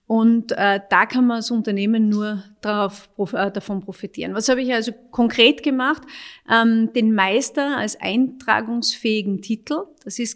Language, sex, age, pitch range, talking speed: German, female, 40-59, 210-255 Hz, 150 wpm